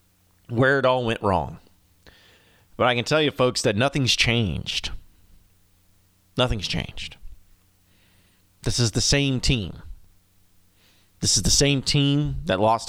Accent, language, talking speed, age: American, English, 130 wpm, 30-49